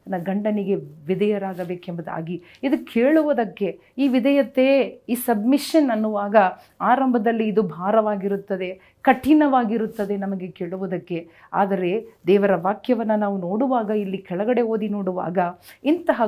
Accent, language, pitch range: native, Kannada, 190-240 Hz